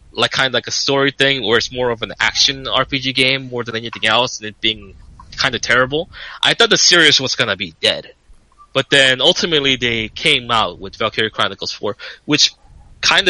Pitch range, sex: 120-150 Hz, male